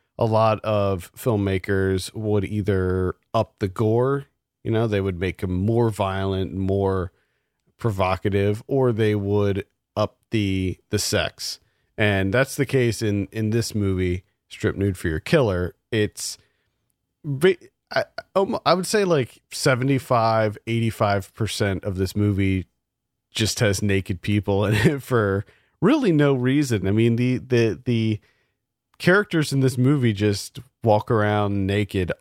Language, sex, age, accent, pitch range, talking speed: English, male, 40-59, American, 95-120 Hz, 130 wpm